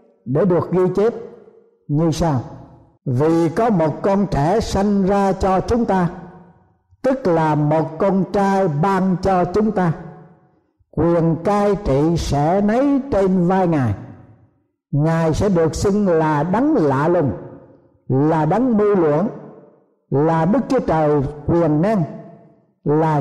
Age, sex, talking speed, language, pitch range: 60-79, male, 135 wpm, Vietnamese, 150-205 Hz